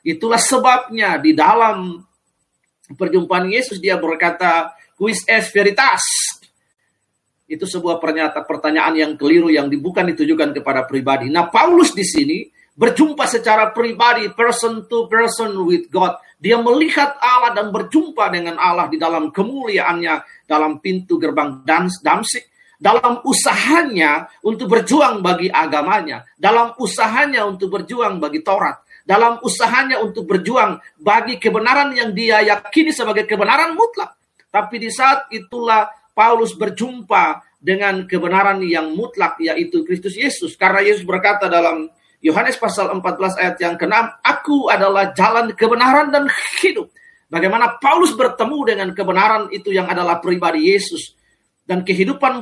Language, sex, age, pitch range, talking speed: Indonesian, male, 40-59, 180-255 Hz, 130 wpm